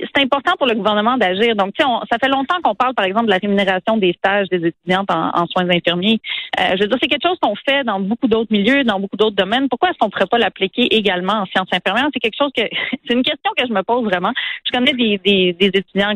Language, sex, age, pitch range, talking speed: French, female, 40-59, 195-270 Hz, 260 wpm